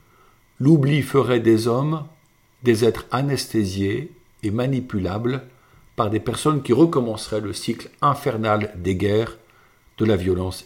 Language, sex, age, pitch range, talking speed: French, male, 50-69, 95-120 Hz, 125 wpm